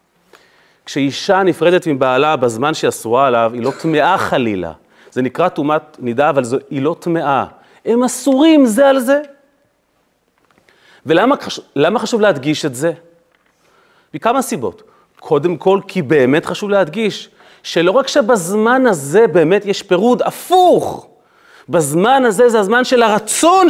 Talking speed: 130 wpm